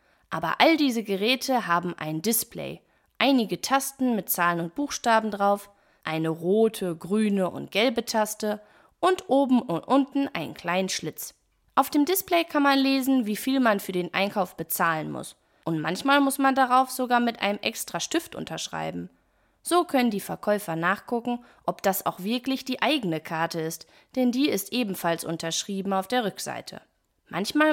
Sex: female